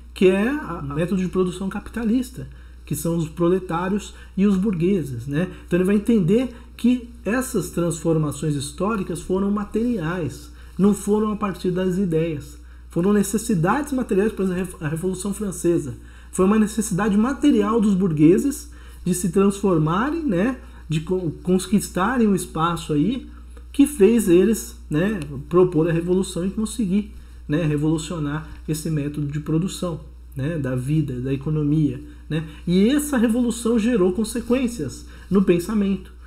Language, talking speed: Portuguese, 135 wpm